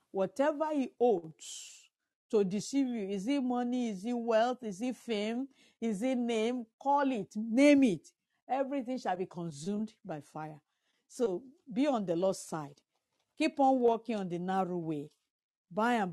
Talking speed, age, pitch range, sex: 160 wpm, 50-69, 170-245 Hz, female